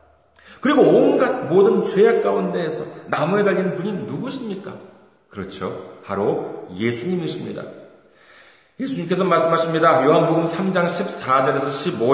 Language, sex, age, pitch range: Korean, male, 40-59, 155-220 Hz